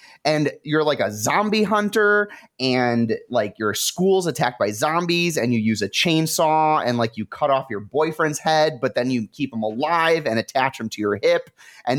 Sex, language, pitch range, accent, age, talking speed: male, English, 130-190 Hz, American, 30-49, 195 wpm